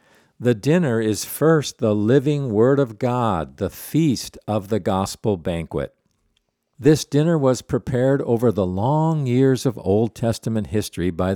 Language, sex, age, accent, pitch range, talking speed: English, male, 50-69, American, 95-135 Hz, 150 wpm